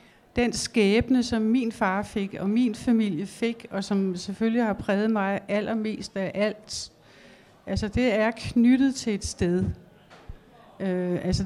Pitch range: 190-230 Hz